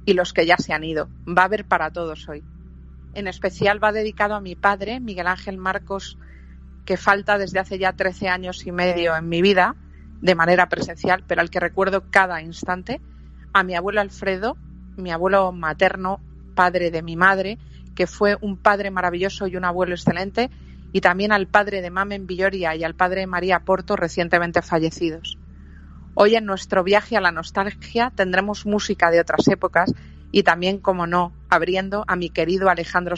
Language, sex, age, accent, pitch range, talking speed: Spanish, female, 40-59, Spanish, 170-200 Hz, 180 wpm